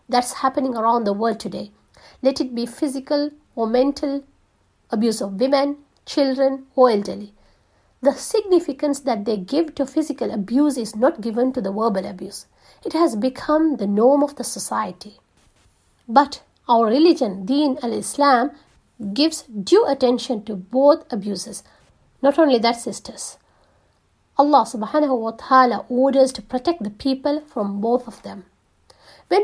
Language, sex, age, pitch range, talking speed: English, female, 50-69, 235-290 Hz, 145 wpm